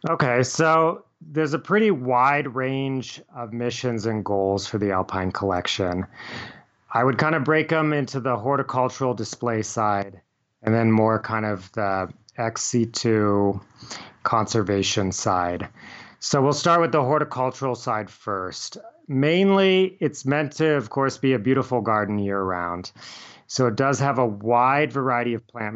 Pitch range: 105-135 Hz